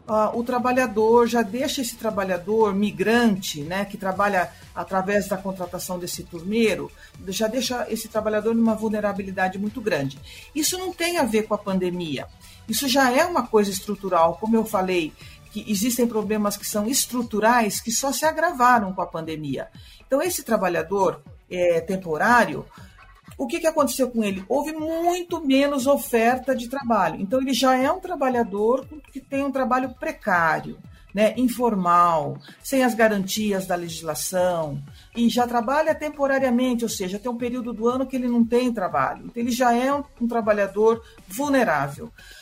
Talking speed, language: 155 wpm, Portuguese